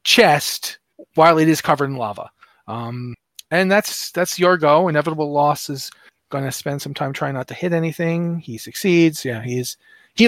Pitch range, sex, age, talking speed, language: 130-175 Hz, male, 30-49, 175 wpm, English